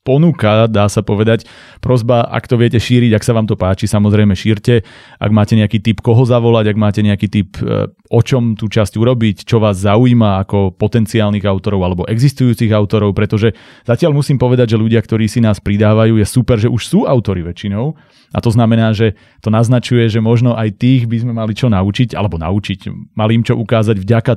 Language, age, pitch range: Slovak, 30-49, 105-120 Hz